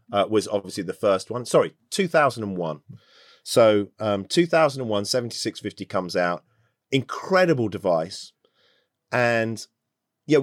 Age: 40-59